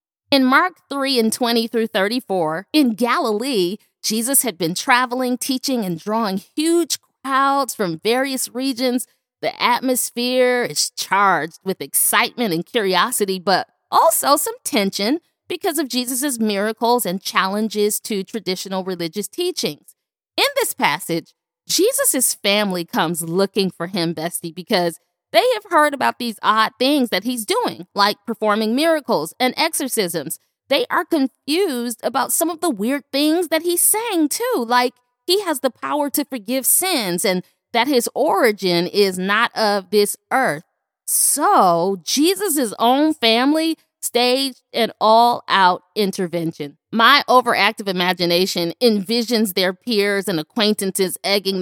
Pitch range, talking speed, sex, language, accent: 190-270 Hz, 135 wpm, female, English, American